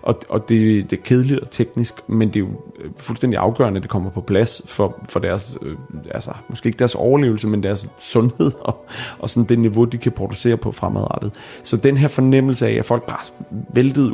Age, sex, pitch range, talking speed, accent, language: 30-49, male, 105-125 Hz, 205 wpm, native, Danish